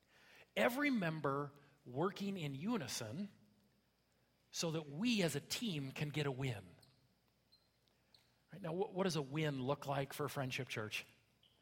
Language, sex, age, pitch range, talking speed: English, male, 40-59, 135-180 Hz, 130 wpm